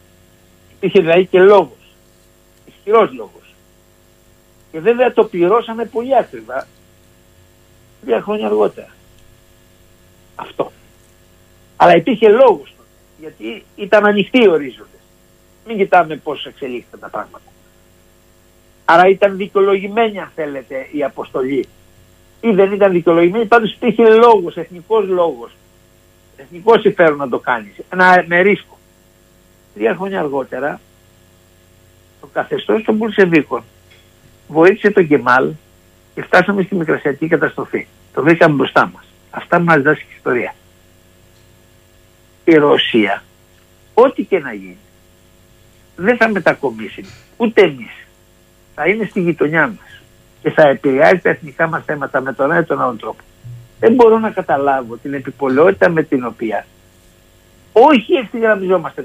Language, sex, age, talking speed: Greek, male, 60-79, 115 wpm